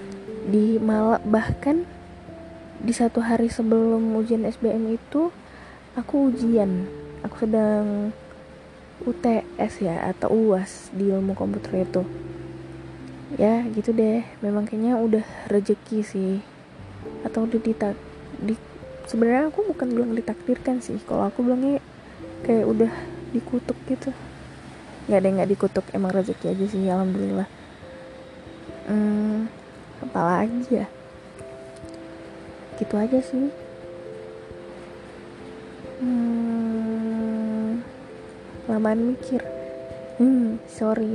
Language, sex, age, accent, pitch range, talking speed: Indonesian, female, 20-39, native, 195-245 Hz, 100 wpm